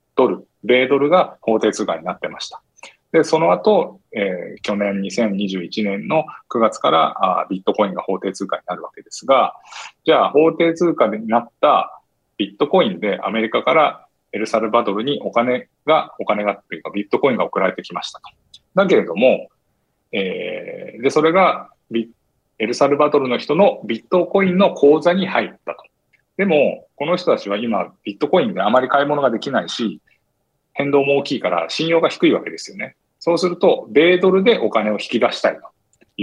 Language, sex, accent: Japanese, male, native